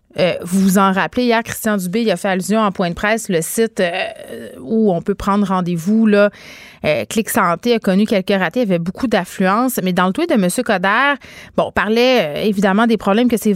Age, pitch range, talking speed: 30-49, 185-225 Hz, 230 wpm